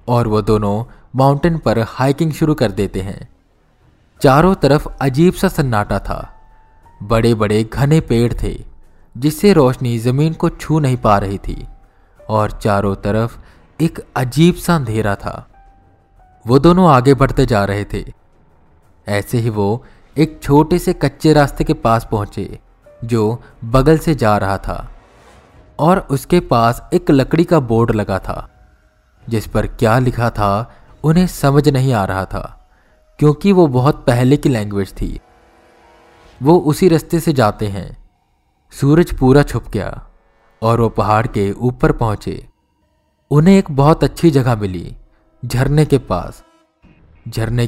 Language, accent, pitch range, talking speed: Hindi, native, 105-150 Hz, 145 wpm